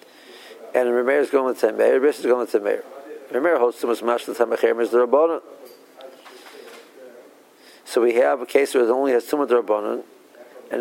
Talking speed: 190 wpm